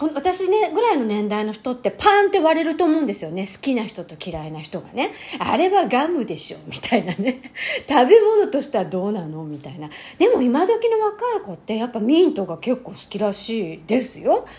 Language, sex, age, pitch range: Japanese, female, 40-59, 185-310 Hz